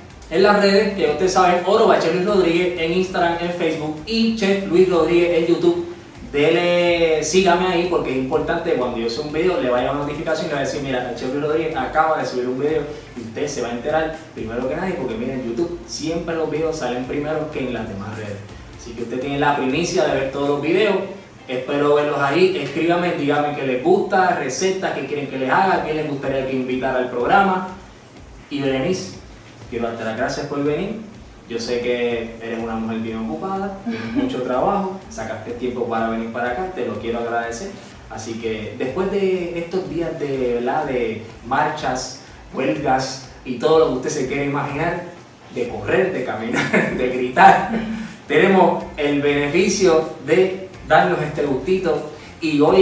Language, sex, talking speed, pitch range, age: Spanish, male, 185 wpm, 125-175 Hz, 20-39